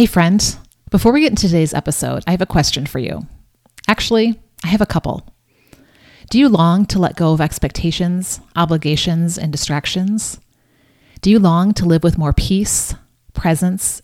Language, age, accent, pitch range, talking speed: English, 30-49, American, 155-195 Hz, 165 wpm